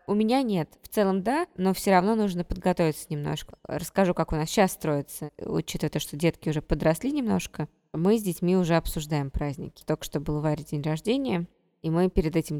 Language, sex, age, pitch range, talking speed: Russian, female, 20-39, 155-180 Hz, 195 wpm